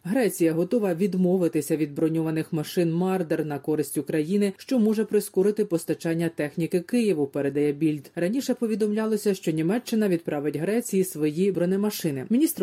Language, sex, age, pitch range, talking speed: Ukrainian, female, 30-49, 160-195 Hz, 130 wpm